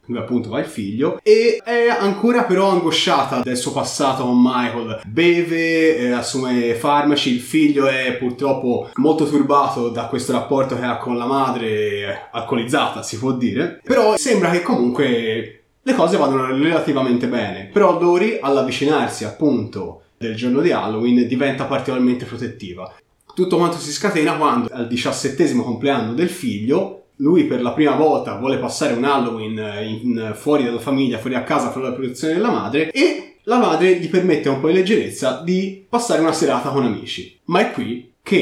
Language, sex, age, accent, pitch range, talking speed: Italian, male, 20-39, native, 125-160 Hz, 165 wpm